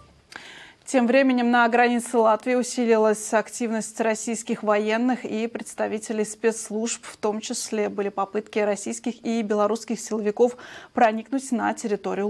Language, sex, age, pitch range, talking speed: Russian, female, 20-39, 205-235 Hz, 115 wpm